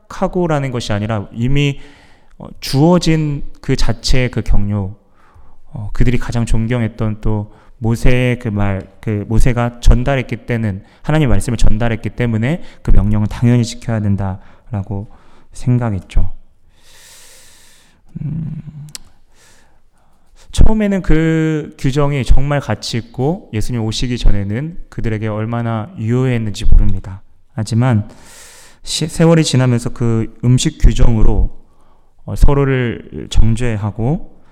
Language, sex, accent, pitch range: Korean, male, native, 110-145 Hz